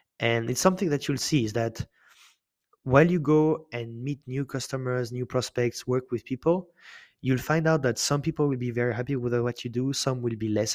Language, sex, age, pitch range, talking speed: English, male, 20-39, 115-135 Hz, 210 wpm